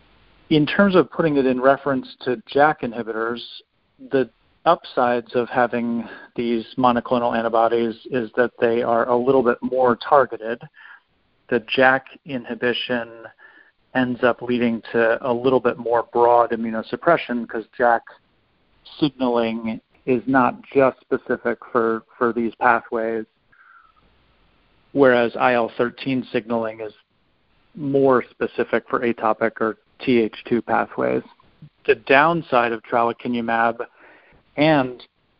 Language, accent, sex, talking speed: English, American, male, 110 wpm